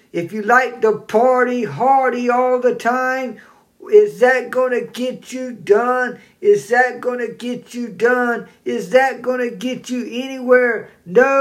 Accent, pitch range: American, 210-255 Hz